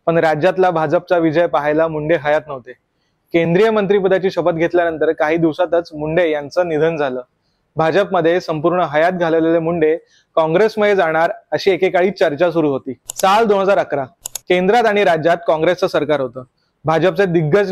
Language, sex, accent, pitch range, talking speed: Marathi, male, native, 160-195 Hz, 135 wpm